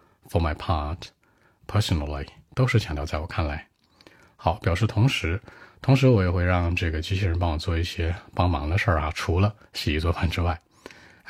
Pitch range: 80-100 Hz